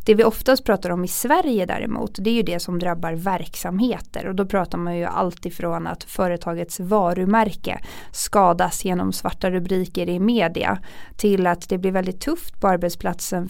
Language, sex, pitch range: English, female, 180-235 Hz